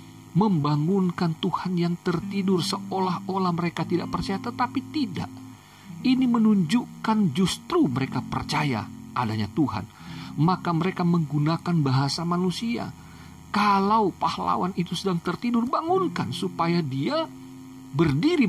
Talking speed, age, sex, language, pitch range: 100 wpm, 50-69, male, Indonesian, 120-180 Hz